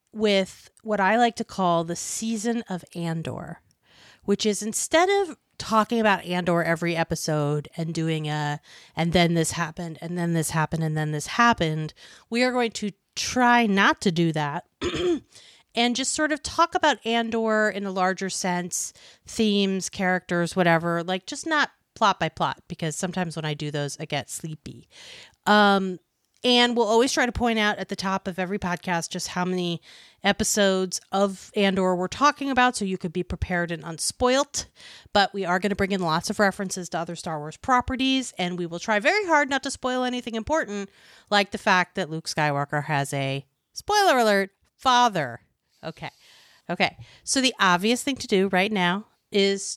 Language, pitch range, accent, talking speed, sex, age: English, 170-230 Hz, American, 180 wpm, female, 30-49